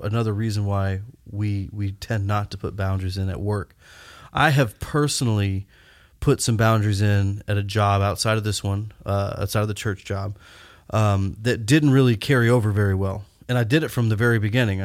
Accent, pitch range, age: American, 105-130 Hz, 30-49